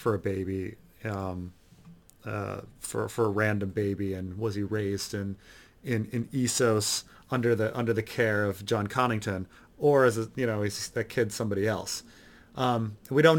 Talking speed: 175 wpm